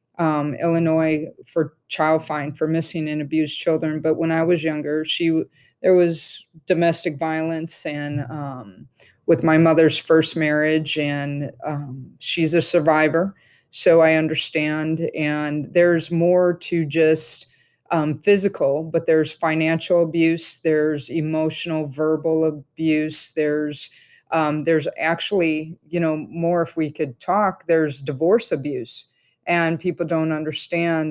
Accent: American